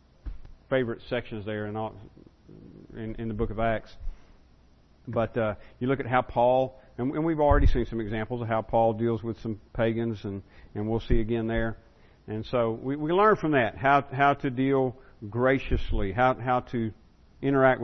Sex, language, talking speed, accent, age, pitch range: male, English, 180 wpm, American, 50-69, 105-125 Hz